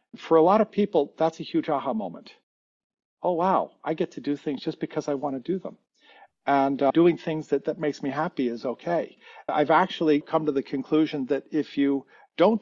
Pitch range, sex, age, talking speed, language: 145-180 Hz, male, 50-69, 215 wpm, English